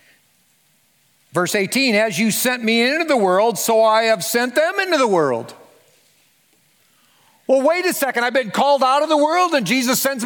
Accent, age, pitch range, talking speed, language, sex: American, 50-69, 180-260 Hz, 180 wpm, English, male